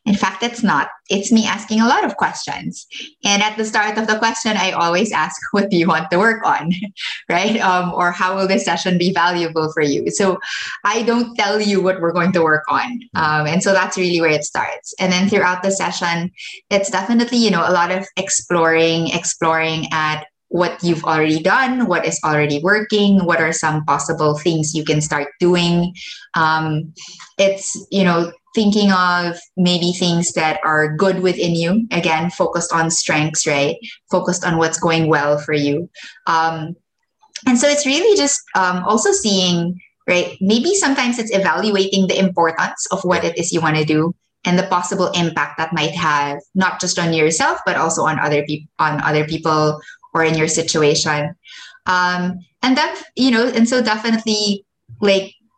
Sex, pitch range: female, 160-205 Hz